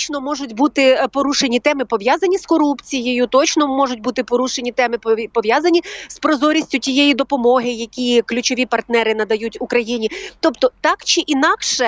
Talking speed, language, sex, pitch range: 135 wpm, Ukrainian, female, 230-290 Hz